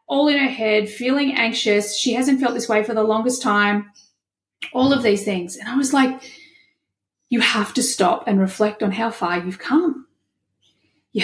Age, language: 30-49, English